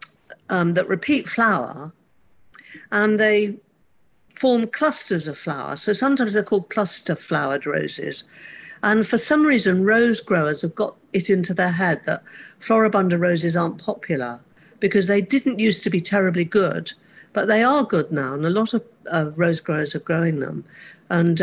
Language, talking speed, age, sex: English, 160 wpm, 50-69, female